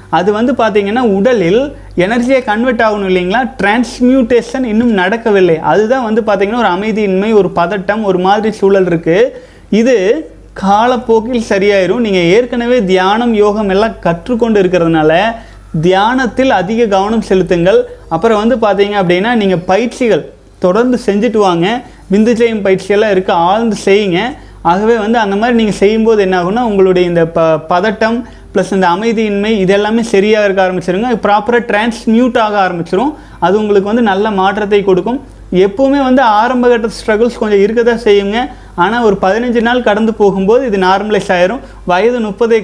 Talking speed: 140 wpm